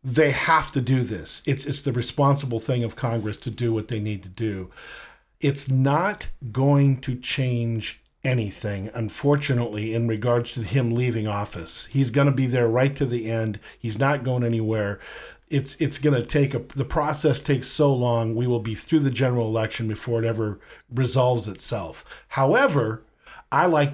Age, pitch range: 50-69, 115-140 Hz